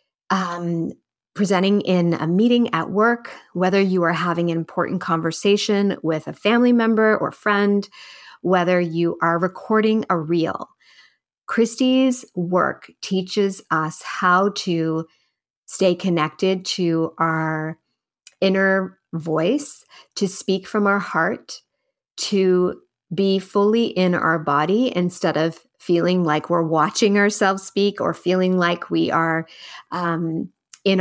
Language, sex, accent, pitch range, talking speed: English, female, American, 170-205 Hz, 125 wpm